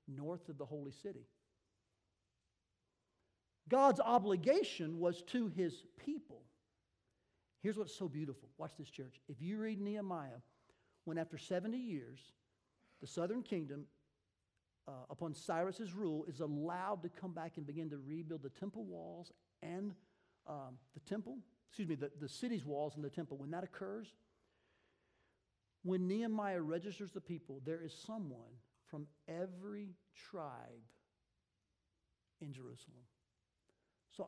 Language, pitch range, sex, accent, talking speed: English, 145-215 Hz, male, American, 130 wpm